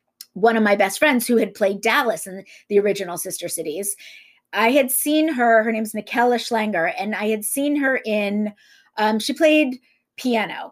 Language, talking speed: English, 180 wpm